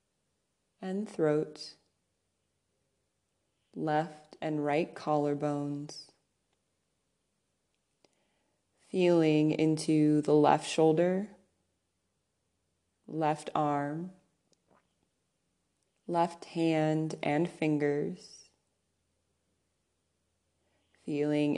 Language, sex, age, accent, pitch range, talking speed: English, female, 20-39, American, 145-160 Hz, 50 wpm